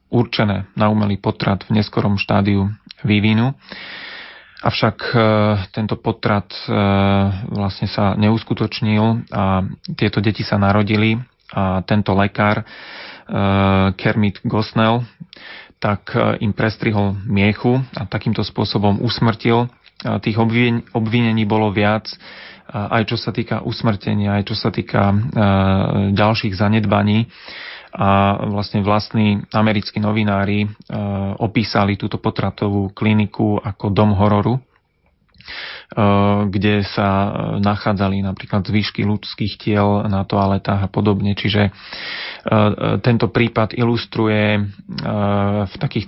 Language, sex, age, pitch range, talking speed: Slovak, male, 30-49, 100-110 Hz, 105 wpm